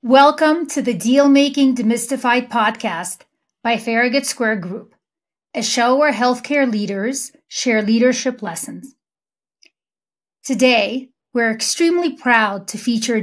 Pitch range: 220-265 Hz